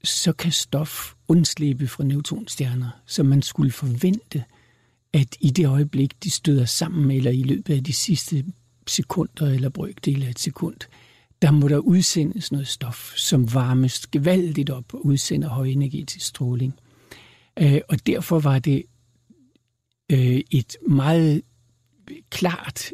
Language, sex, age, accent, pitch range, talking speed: Danish, male, 60-79, native, 130-165 Hz, 135 wpm